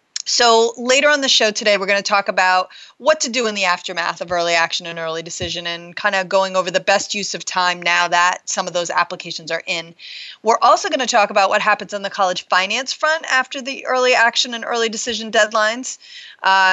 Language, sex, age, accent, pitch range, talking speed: English, female, 30-49, American, 190-265 Hz, 225 wpm